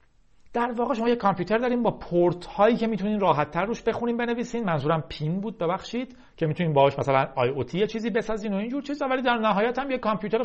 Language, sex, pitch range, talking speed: Persian, male, 140-225 Hz, 220 wpm